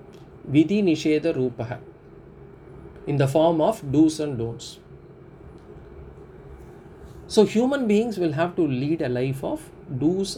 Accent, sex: Indian, male